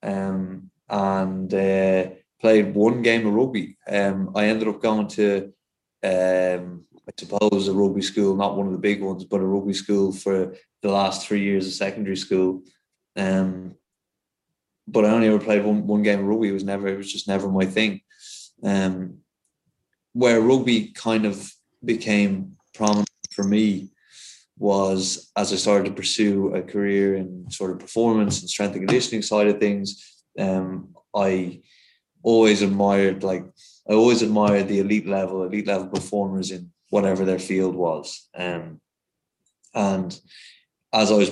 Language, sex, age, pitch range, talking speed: English, male, 20-39, 95-105 Hz, 160 wpm